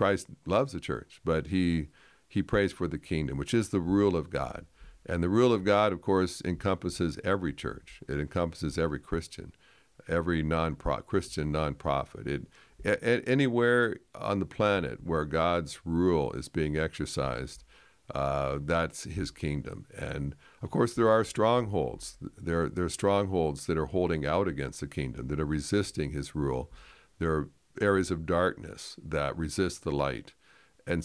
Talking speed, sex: 160 wpm, male